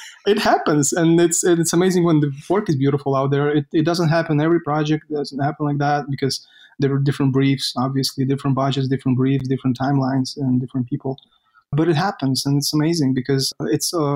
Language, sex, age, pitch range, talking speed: English, male, 20-39, 130-150 Hz, 195 wpm